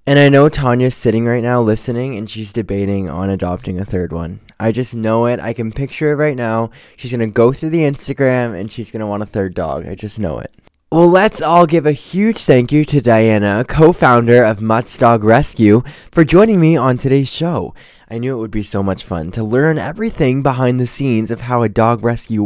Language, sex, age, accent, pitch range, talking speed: English, male, 20-39, American, 110-150 Hz, 225 wpm